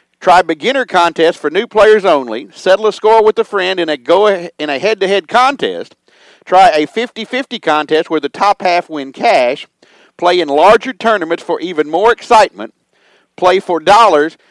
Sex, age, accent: male, 50-69, American